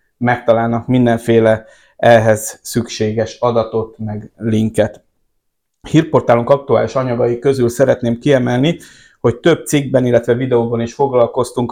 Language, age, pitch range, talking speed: Hungarian, 60-79, 115-135 Hz, 110 wpm